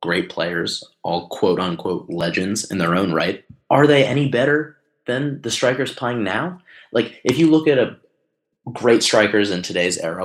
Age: 20-39